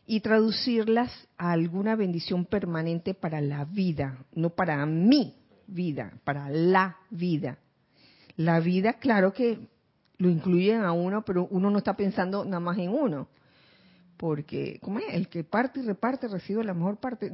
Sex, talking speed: female, 155 wpm